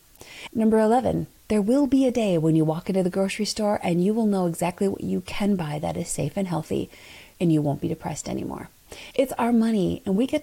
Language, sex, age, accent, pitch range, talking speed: English, female, 30-49, American, 165-245 Hz, 230 wpm